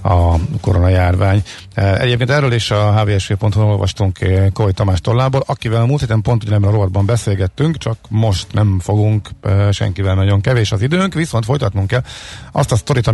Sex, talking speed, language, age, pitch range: male, 170 wpm, Hungarian, 50-69, 95-115 Hz